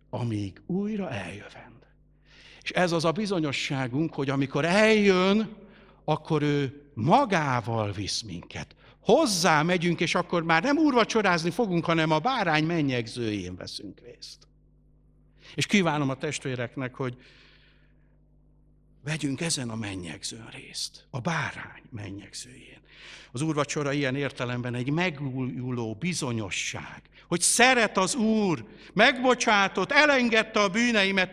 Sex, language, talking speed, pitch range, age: male, Hungarian, 110 wpm, 115-180 Hz, 60-79